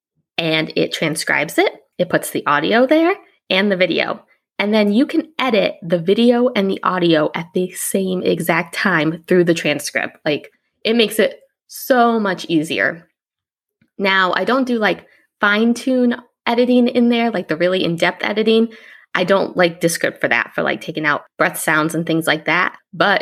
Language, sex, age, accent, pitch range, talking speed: English, female, 20-39, American, 165-215 Hz, 175 wpm